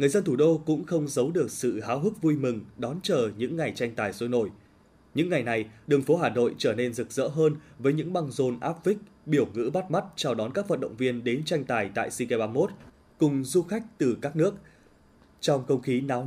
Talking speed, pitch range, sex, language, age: 240 wpm, 125-155 Hz, male, Vietnamese, 20-39